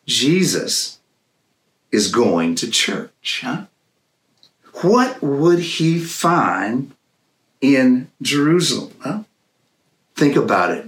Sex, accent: male, American